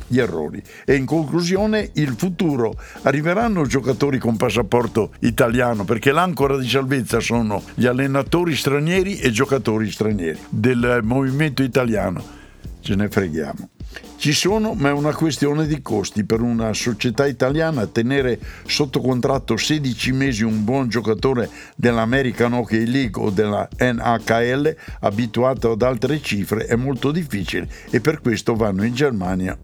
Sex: male